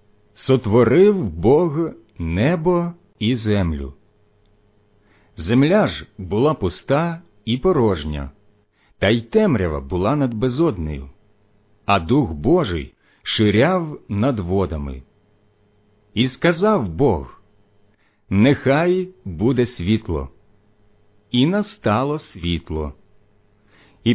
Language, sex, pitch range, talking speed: Ukrainian, male, 100-140 Hz, 80 wpm